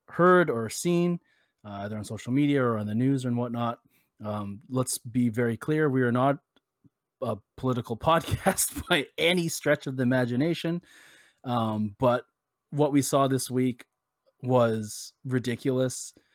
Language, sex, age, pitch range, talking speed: English, male, 30-49, 115-135 Hz, 145 wpm